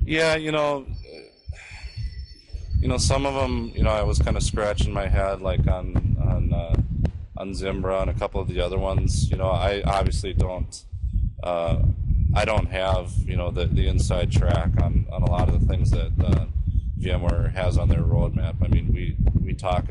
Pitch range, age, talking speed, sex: 85-95 Hz, 20-39, 195 wpm, male